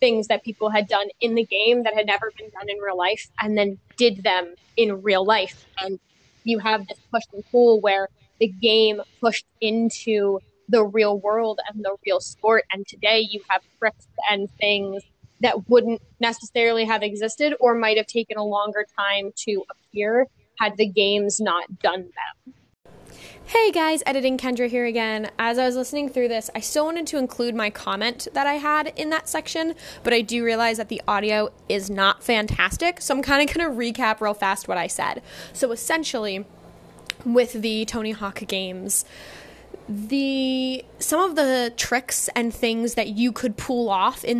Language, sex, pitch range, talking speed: English, female, 210-250 Hz, 185 wpm